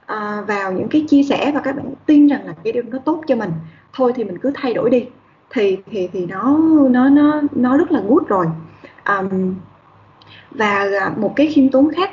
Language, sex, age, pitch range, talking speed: Vietnamese, female, 10-29, 210-275 Hz, 215 wpm